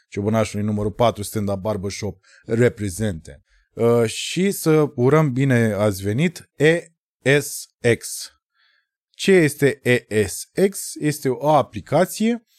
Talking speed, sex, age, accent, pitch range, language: 95 wpm, male, 20-39, native, 105-145 Hz, Romanian